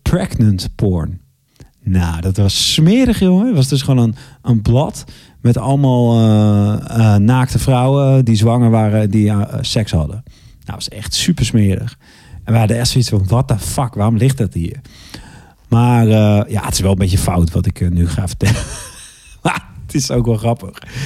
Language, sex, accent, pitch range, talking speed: Dutch, male, Dutch, 100-130 Hz, 195 wpm